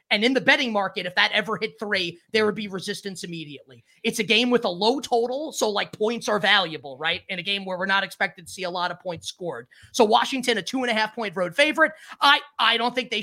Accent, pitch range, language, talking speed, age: American, 175-230 Hz, English, 245 wpm, 30-49